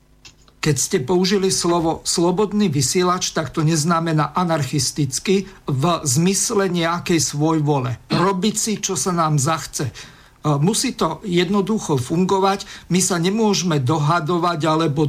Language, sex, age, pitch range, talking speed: Slovak, male, 50-69, 155-185 Hz, 120 wpm